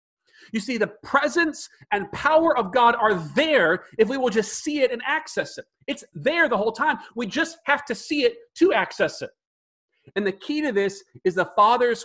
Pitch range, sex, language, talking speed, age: 185-270 Hz, male, English, 205 wpm, 40-59